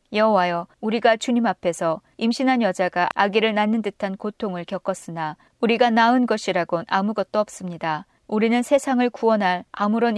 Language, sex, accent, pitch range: Korean, female, native, 180-235 Hz